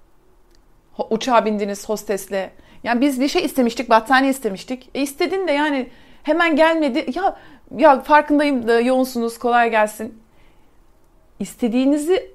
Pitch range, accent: 215-280 Hz, native